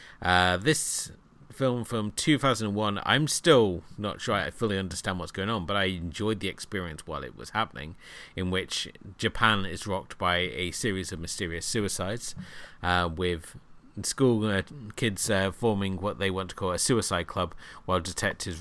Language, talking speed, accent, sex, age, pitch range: English, 165 wpm, British, male, 30-49, 90-110 Hz